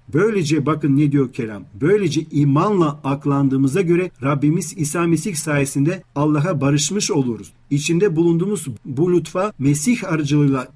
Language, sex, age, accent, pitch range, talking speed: Turkish, male, 40-59, native, 135-165 Hz, 125 wpm